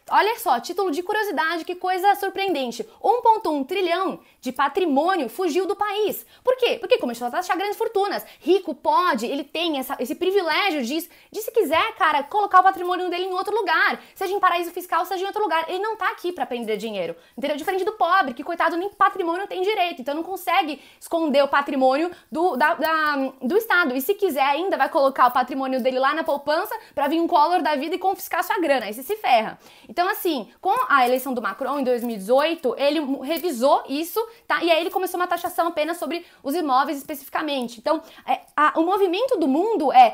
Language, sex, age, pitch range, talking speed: Portuguese, female, 20-39, 285-385 Hz, 200 wpm